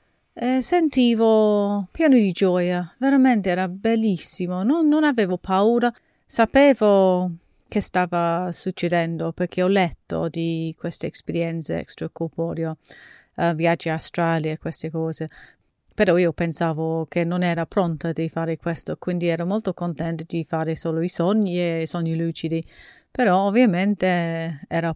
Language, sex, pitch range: Italian, female, 165-210 Hz